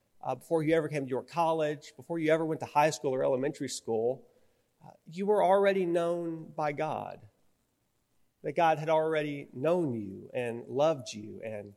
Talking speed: 180 wpm